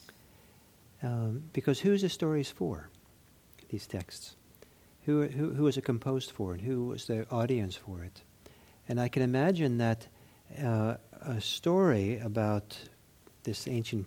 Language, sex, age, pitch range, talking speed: English, male, 50-69, 105-130 Hz, 140 wpm